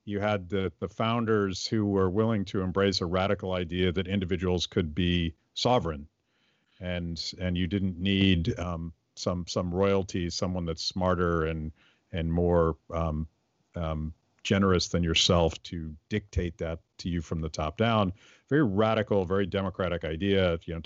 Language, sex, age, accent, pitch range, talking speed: English, male, 50-69, American, 85-105 Hz, 155 wpm